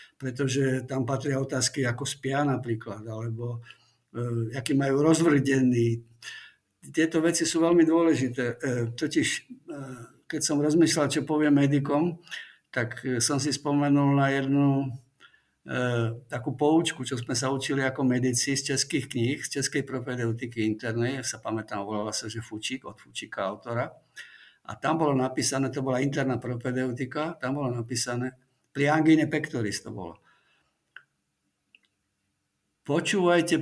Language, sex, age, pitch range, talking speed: Slovak, male, 50-69, 125-150 Hz, 130 wpm